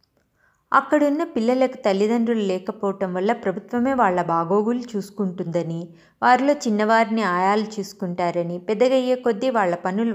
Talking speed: 100 wpm